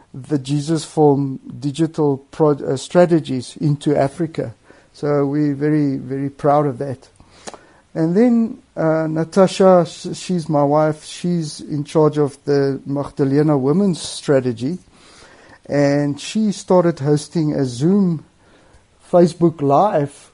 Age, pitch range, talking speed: 50-69, 140-175 Hz, 110 wpm